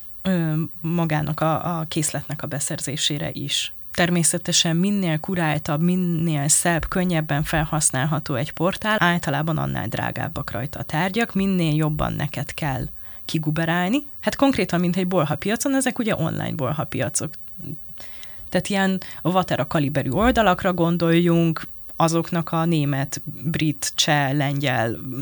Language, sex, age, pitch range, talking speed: Hungarian, female, 20-39, 150-185 Hz, 120 wpm